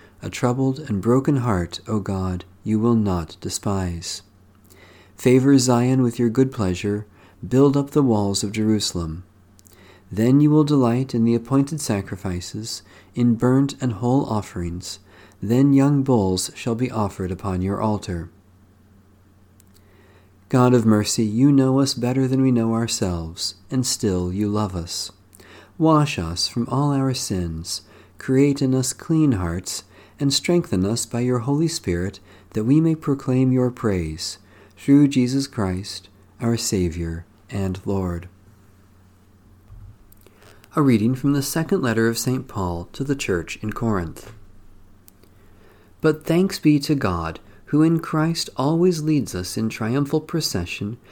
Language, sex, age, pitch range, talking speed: English, male, 40-59, 95-130 Hz, 140 wpm